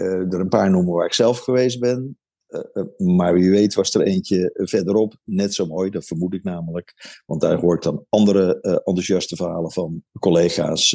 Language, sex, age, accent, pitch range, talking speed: Dutch, male, 50-69, Dutch, 90-110 Hz, 210 wpm